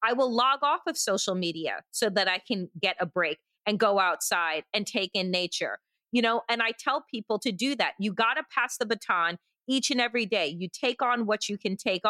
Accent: American